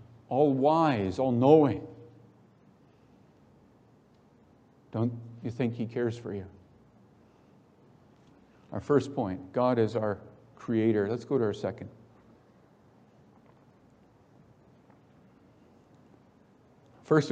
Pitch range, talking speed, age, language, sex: 110-135 Hz, 75 wpm, 50-69, English, male